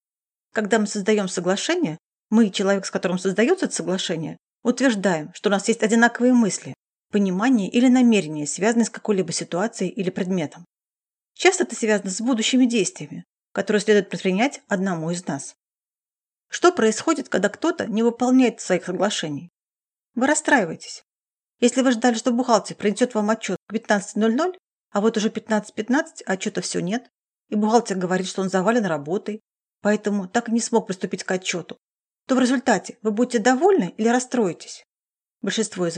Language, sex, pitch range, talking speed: Russian, female, 195-240 Hz, 150 wpm